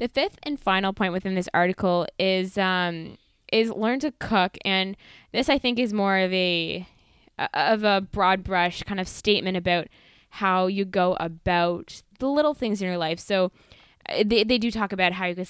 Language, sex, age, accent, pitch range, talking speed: English, female, 10-29, American, 180-215 Hz, 190 wpm